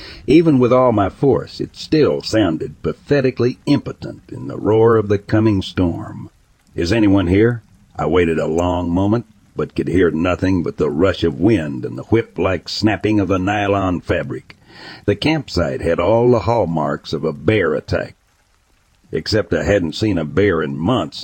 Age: 60-79